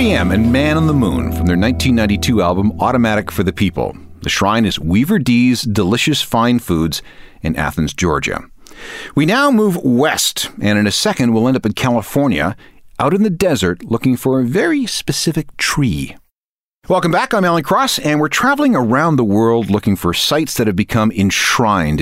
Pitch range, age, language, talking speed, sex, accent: 90-145 Hz, 40-59, English, 180 wpm, male, American